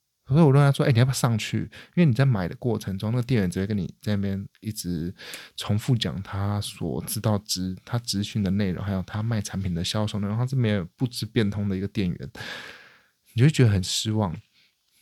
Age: 20-39